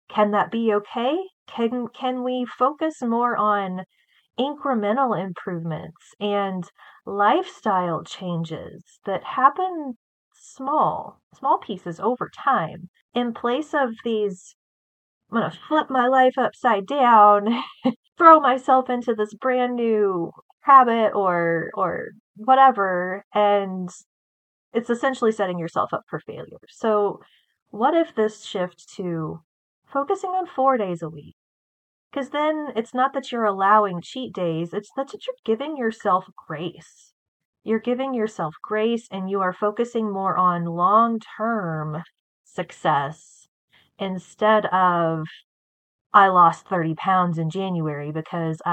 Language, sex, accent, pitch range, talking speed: English, female, American, 175-250 Hz, 125 wpm